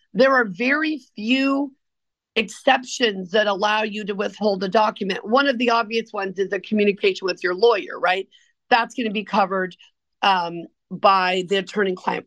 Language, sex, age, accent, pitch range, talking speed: English, female, 50-69, American, 215-270 Hz, 165 wpm